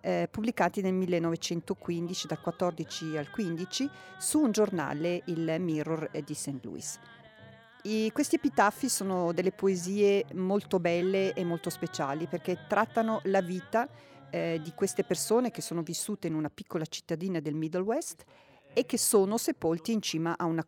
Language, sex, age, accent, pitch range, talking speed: Italian, female, 40-59, native, 165-200 Hz, 155 wpm